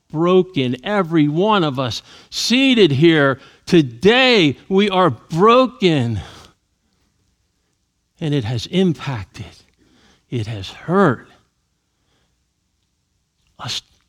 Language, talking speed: English, 80 wpm